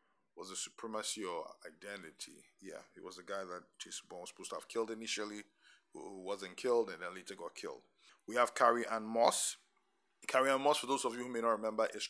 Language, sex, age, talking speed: English, male, 20-39, 220 wpm